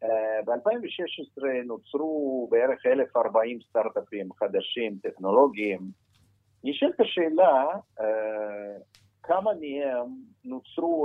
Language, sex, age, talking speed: Hebrew, male, 50-69, 75 wpm